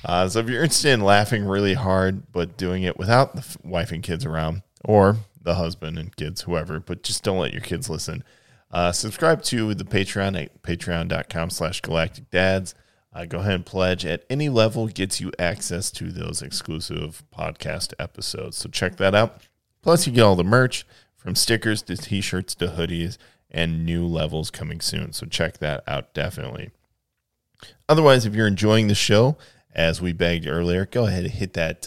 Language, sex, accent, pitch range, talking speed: English, male, American, 85-110 Hz, 185 wpm